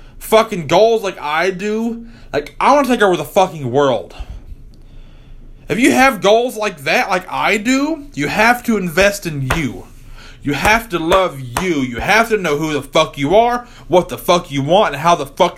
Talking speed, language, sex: 200 wpm, English, male